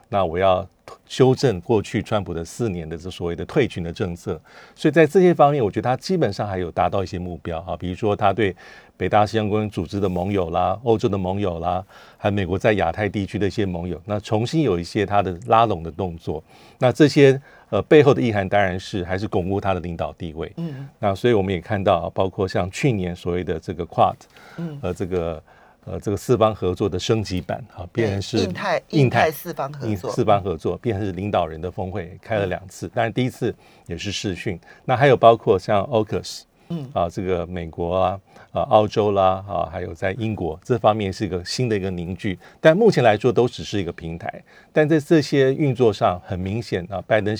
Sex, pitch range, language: male, 90-115 Hz, Chinese